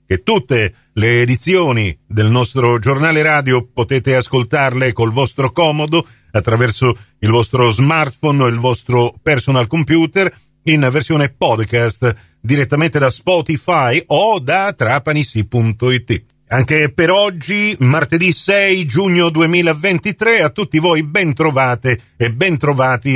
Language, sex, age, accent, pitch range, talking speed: Italian, male, 50-69, native, 130-180 Hz, 115 wpm